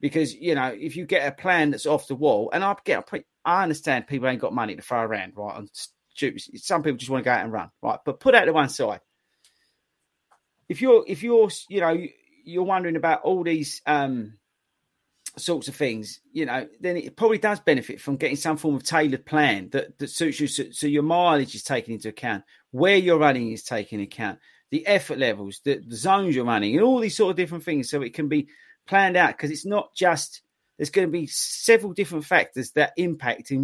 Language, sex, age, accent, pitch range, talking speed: English, male, 40-59, British, 130-175 Hz, 220 wpm